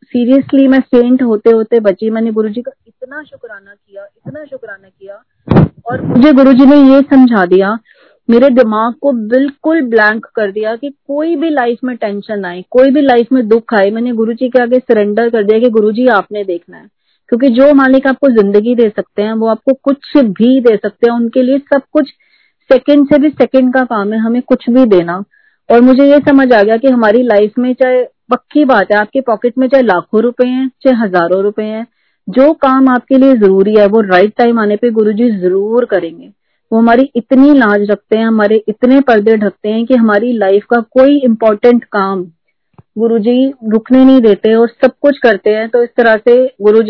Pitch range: 215-265 Hz